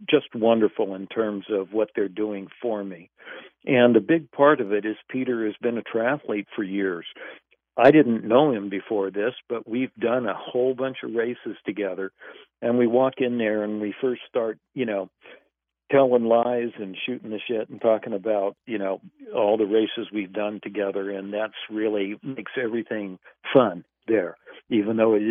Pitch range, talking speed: 105-120 Hz, 185 wpm